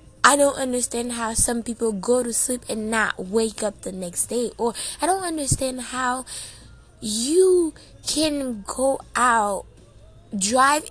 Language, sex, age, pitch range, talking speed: English, female, 10-29, 195-260 Hz, 145 wpm